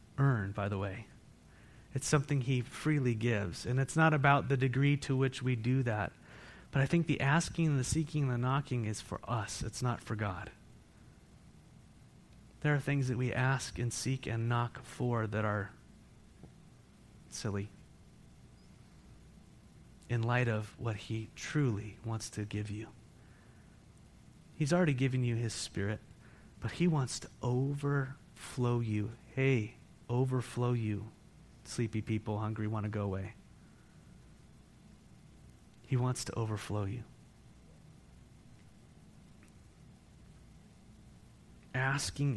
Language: English